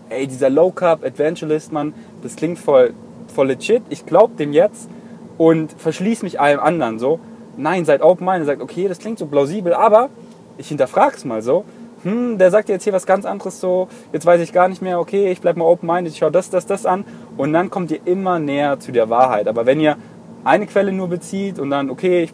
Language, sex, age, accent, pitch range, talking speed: German, male, 20-39, German, 150-205 Hz, 220 wpm